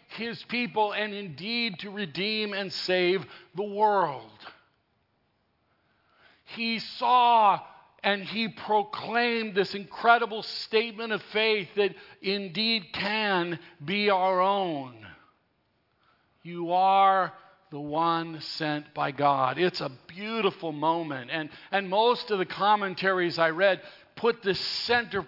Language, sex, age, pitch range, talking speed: English, male, 50-69, 165-215 Hz, 115 wpm